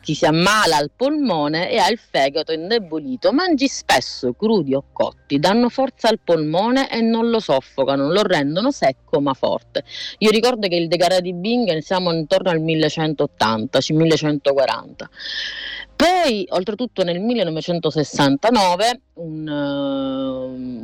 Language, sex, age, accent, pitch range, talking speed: Italian, female, 30-49, native, 145-230 Hz, 125 wpm